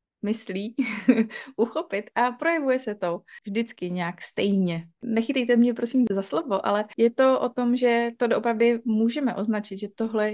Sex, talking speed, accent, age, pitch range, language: female, 150 wpm, native, 30-49, 195-230 Hz, Czech